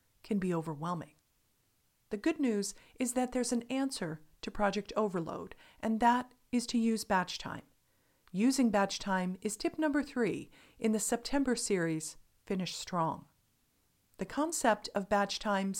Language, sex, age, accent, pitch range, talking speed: English, female, 50-69, American, 180-235 Hz, 150 wpm